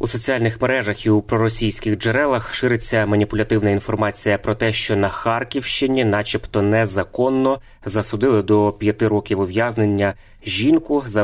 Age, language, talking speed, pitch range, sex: 20-39, Ukrainian, 130 wpm, 100-115 Hz, male